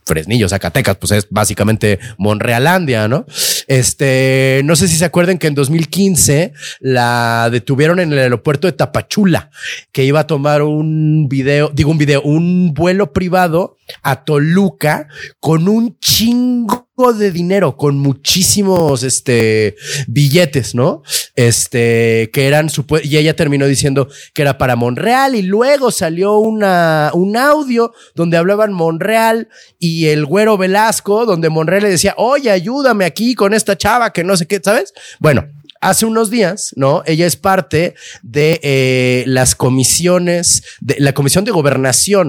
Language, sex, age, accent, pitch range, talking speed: Spanish, male, 30-49, Mexican, 135-195 Hz, 150 wpm